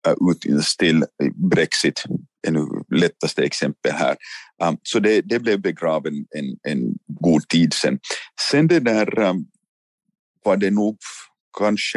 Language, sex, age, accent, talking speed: Swedish, male, 50-69, Finnish, 120 wpm